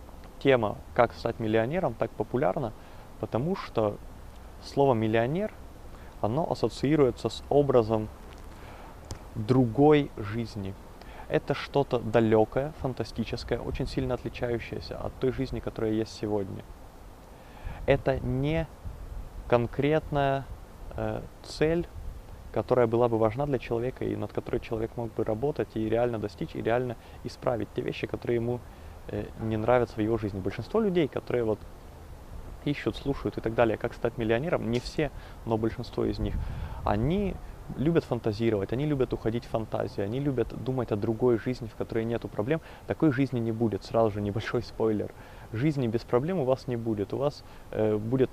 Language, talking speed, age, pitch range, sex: Russian, 145 wpm, 20-39, 105-125 Hz, male